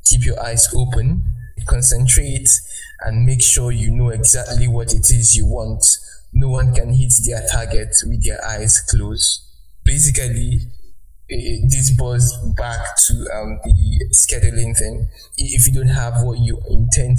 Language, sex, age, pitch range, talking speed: English, male, 20-39, 105-125 Hz, 145 wpm